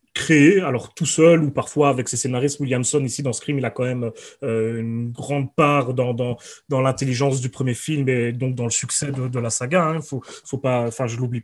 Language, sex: French, male